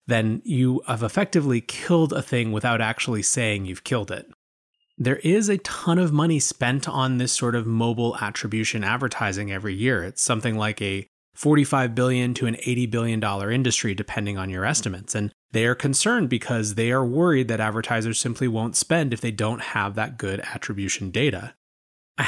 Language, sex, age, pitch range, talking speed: English, male, 30-49, 110-135 Hz, 180 wpm